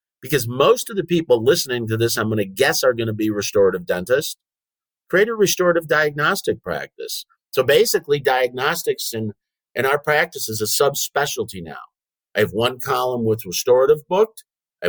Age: 50-69